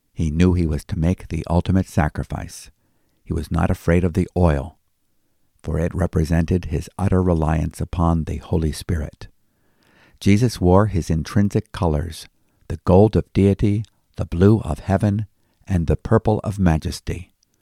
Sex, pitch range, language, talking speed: male, 85-105 Hz, English, 150 wpm